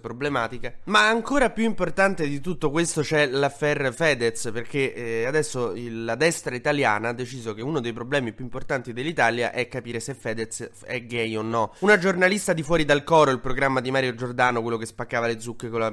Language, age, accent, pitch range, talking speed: Italian, 20-39, native, 115-145 Hz, 200 wpm